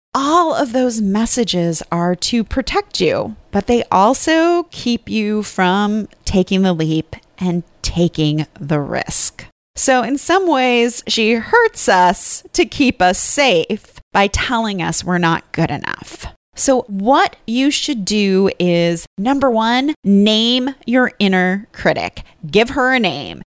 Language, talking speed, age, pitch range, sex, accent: English, 140 wpm, 30-49, 180-250 Hz, female, American